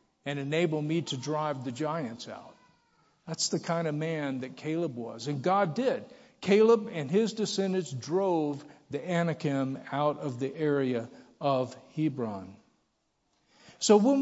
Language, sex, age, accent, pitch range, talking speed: English, male, 50-69, American, 145-180 Hz, 145 wpm